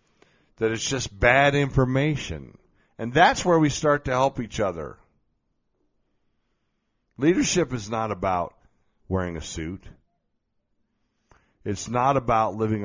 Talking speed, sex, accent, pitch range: 115 wpm, male, American, 90-115 Hz